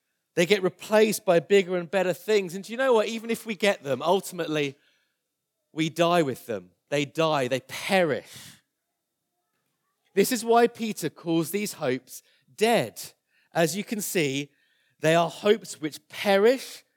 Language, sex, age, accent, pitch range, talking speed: English, male, 30-49, British, 155-210 Hz, 155 wpm